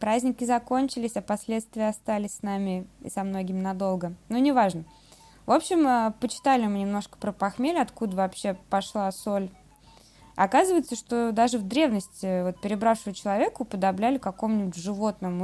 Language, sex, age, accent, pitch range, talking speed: Russian, female, 20-39, native, 185-220 Hz, 135 wpm